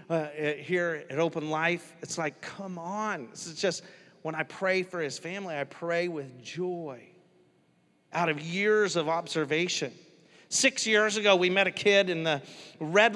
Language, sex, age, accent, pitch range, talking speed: English, male, 40-59, American, 155-195 Hz, 175 wpm